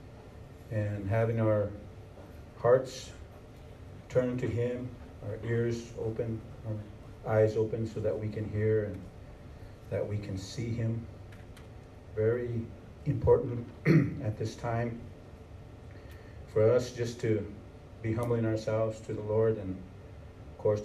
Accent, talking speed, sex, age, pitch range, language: American, 120 wpm, male, 40-59, 100-120 Hz, English